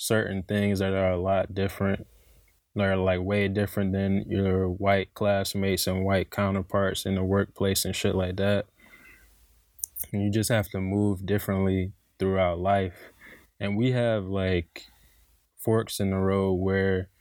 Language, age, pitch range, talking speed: English, 20-39, 95-105 Hz, 155 wpm